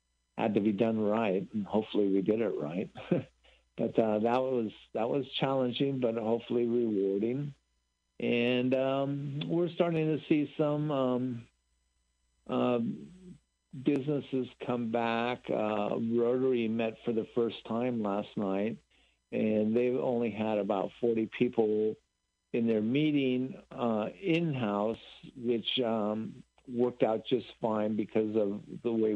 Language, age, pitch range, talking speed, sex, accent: English, 60-79, 110-130 Hz, 135 wpm, male, American